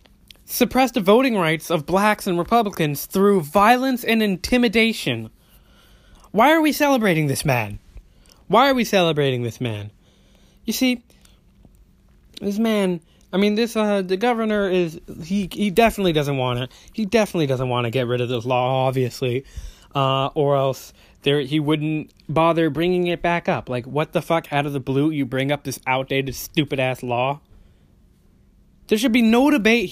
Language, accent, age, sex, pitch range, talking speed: English, American, 20-39, male, 130-200 Hz, 165 wpm